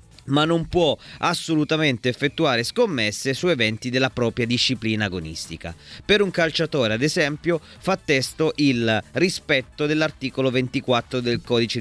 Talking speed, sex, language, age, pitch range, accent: 125 wpm, male, Italian, 30-49, 115-155 Hz, native